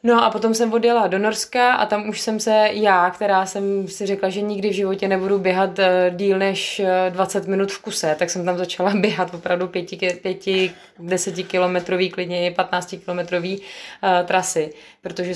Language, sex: Czech, female